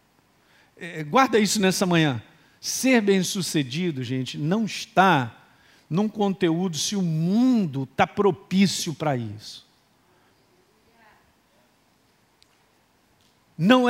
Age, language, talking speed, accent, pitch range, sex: 50-69, Portuguese, 85 wpm, Brazilian, 140-195 Hz, male